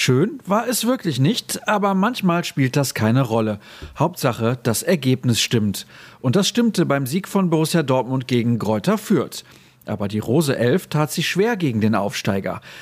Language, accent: German, German